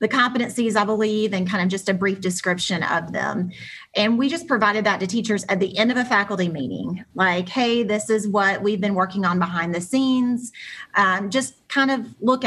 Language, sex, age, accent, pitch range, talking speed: English, female, 30-49, American, 180-215 Hz, 210 wpm